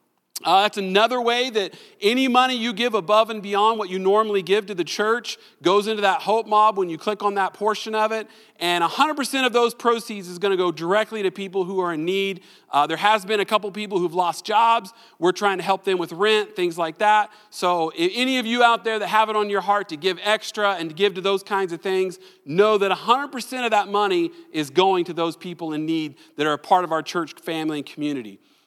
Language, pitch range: English, 180-225 Hz